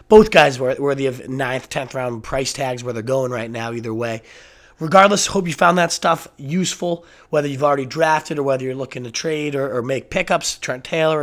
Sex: male